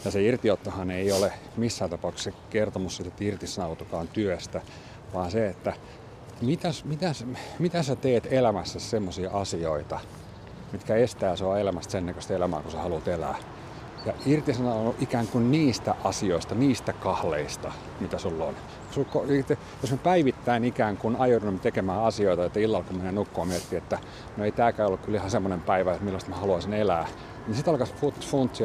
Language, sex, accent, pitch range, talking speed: Finnish, male, native, 95-120 Hz, 150 wpm